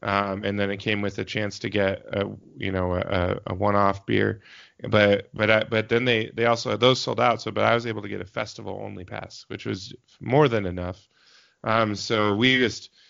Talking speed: 225 wpm